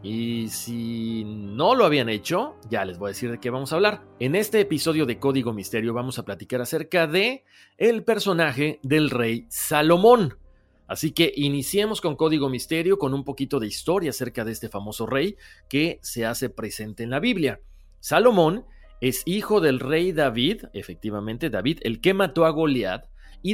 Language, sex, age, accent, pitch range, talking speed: Spanish, male, 40-59, Mexican, 115-165 Hz, 175 wpm